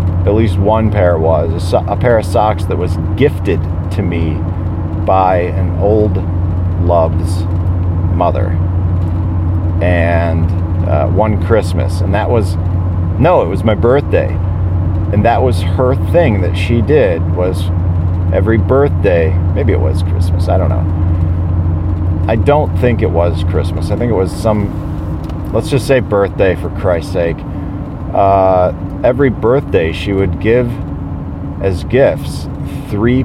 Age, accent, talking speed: 40-59, American, 135 wpm